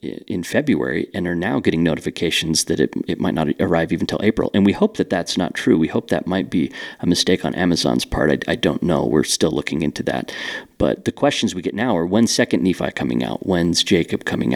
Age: 40-59